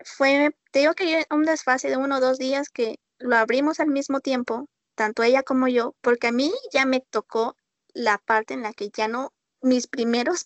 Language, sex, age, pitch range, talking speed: Spanish, female, 20-39, 225-275 Hz, 210 wpm